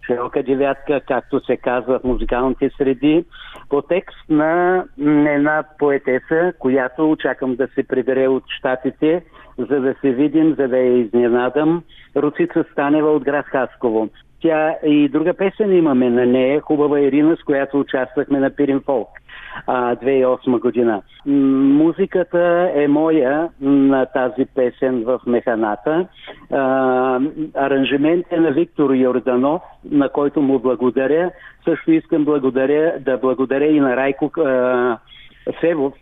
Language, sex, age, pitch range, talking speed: Bulgarian, male, 60-79, 130-155 Hz, 130 wpm